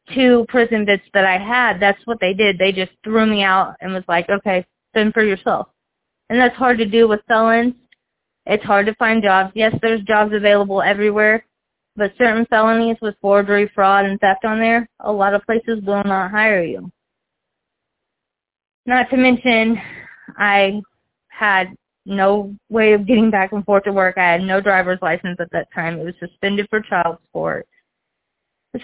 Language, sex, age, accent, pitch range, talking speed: English, female, 20-39, American, 195-225 Hz, 180 wpm